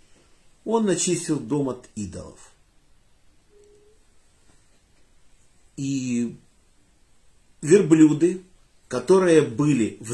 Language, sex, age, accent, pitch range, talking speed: Russian, male, 50-69, native, 105-165 Hz, 60 wpm